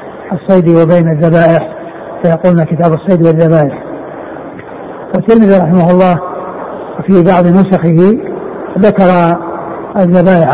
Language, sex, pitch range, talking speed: Arabic, male, 175-200 Hz, 85 wpm